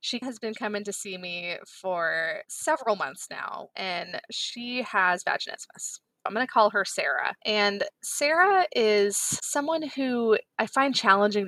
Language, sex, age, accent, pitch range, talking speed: English, female, 20-39, American, 180-225 Hz, 150 wpm